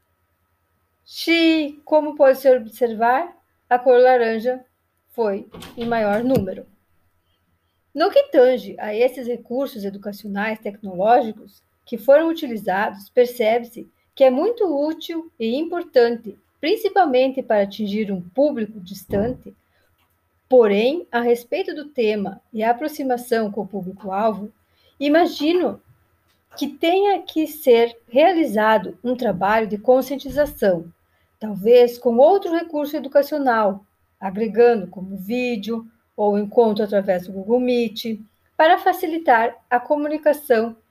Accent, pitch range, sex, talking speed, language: Brazilian, 180-270 Hz, female, 110 wpm, Italian